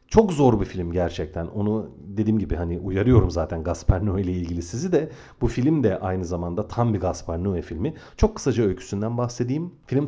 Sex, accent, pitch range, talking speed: male, native, 90-130 Hz, 190 wpm